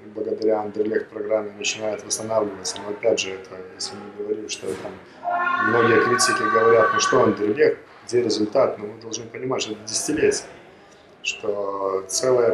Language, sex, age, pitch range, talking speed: Russian, male, 20-39, 105-160 Hz, 150 wpm